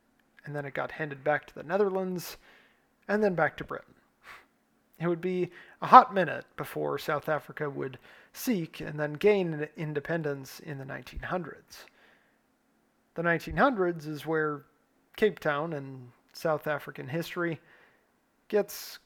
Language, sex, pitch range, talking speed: English, male, 150-185 Hz, 135 wpm